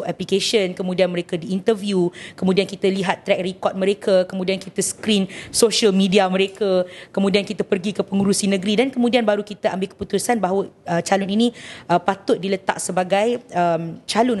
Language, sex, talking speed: Malay, female, 160 wpm